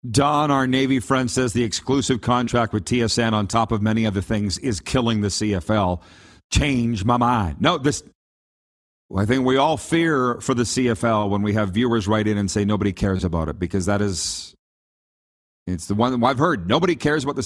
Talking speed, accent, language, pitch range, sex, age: 200 wpm, American, English, 105-135 Hz, male, 40-59